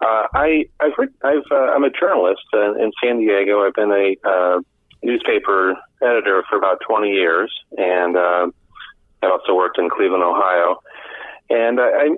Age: 40-59